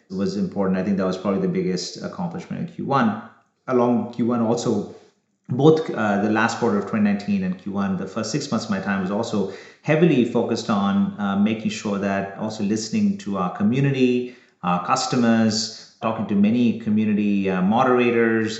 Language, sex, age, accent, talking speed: English, male, 30-49, Indian, 170 wpm